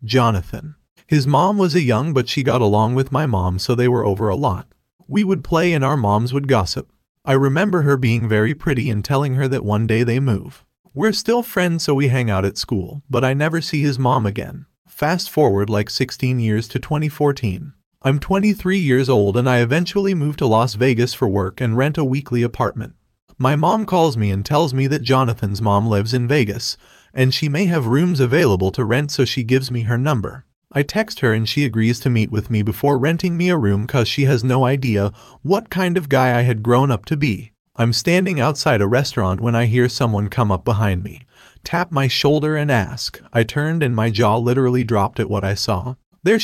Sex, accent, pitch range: male, American, 110-150 Hz